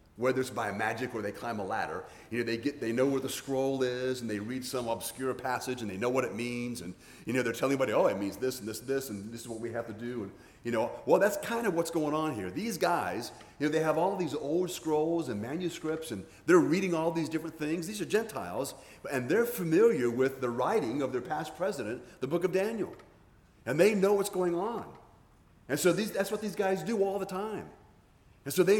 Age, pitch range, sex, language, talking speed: 40-59, 125-175 Hz, male, English, 250 wpm